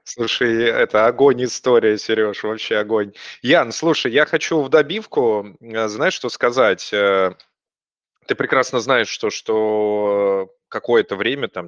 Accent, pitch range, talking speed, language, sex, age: native, 100-135 Hz, 125 wpm, Russian, male, 20-39